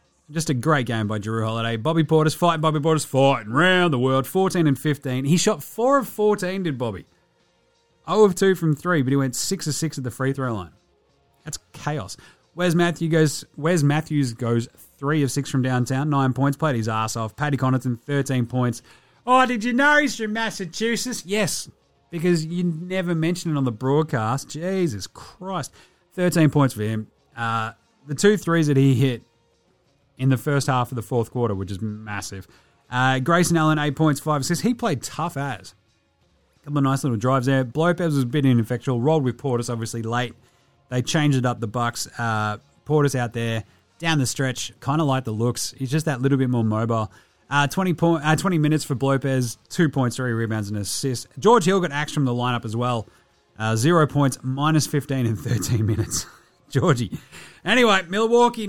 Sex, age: male, 30-49